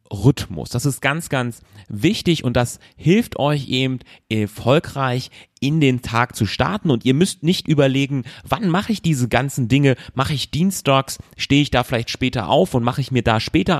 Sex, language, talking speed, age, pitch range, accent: male, German, 185 wpm, 30-49, 110-140 Hz, German